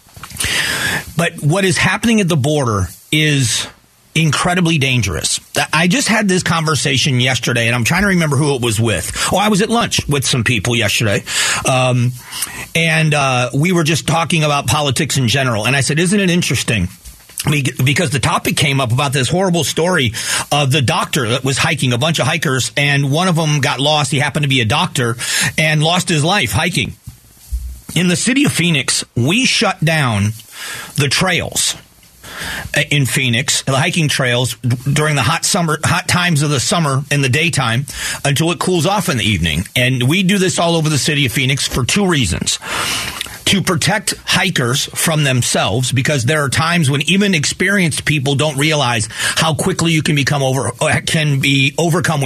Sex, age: male, 40-59